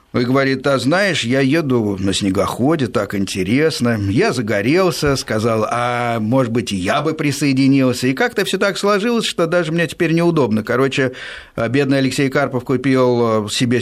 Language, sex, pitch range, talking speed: Russian, male, 115-155 Hz, 150 wpm